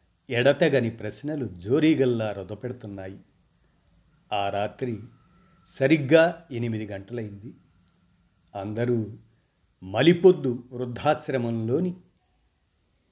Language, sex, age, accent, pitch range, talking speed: Telugu, male, 50-69, native, 105-145 Hz, 55 wpm